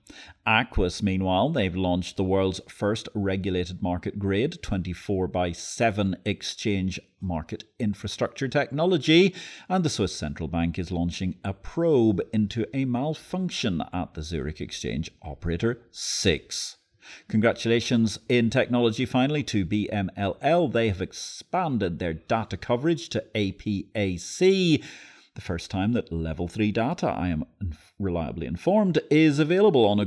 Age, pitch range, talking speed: 40-59, 90-120 Hz, 130 wpm